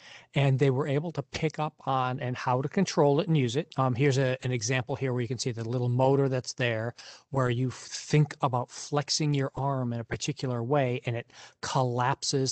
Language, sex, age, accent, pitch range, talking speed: English, male, 40-59, American, 120-145 Hz, 220 wpm